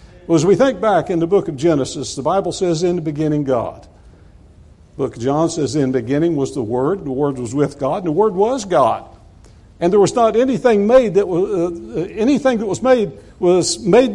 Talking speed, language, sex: 215 wpm, English, male